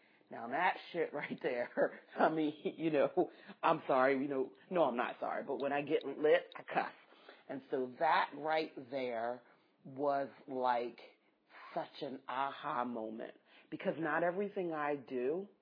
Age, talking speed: 40-59, 155 wpm